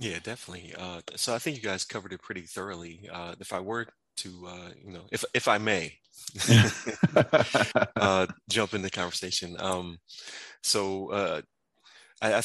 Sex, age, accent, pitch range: male, 20-39, American, 90-105 Hz